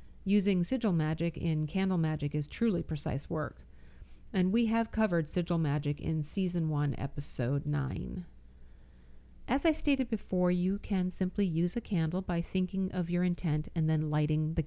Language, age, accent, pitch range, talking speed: English, 40-59, American, 150-200 Hz, 165 wpm